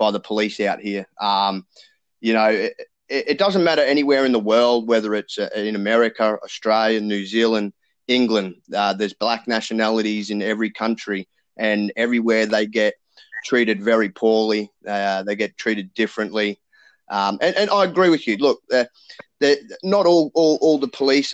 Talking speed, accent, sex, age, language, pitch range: 160 wpm, Australian, male, 20-39, English, 110-145 Hz